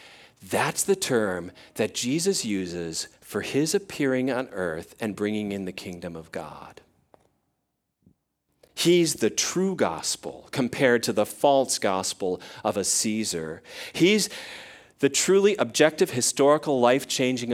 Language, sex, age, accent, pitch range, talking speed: English, male, 40-59, American, 115-165 Hz, 125 wpm